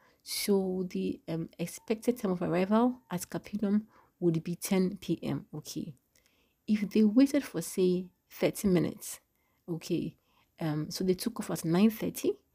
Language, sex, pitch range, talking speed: English, female, 175-235 Hz, 145 wpm